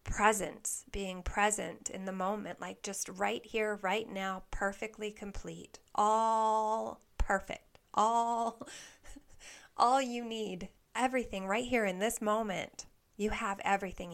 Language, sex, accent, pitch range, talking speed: English, female, American, 195-225 Hz, 125 wpm